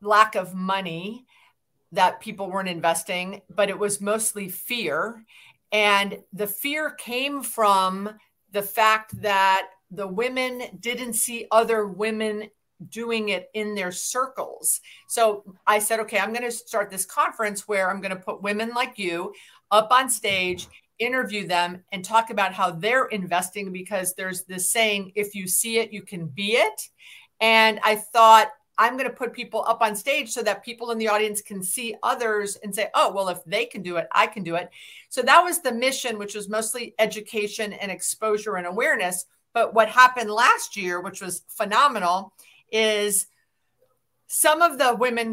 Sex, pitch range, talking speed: female, 195-240 Hz, 175 wpm